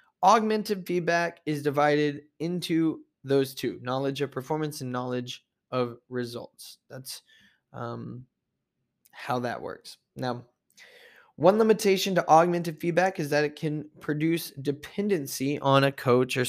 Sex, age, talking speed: male, 20-39, 125 wpm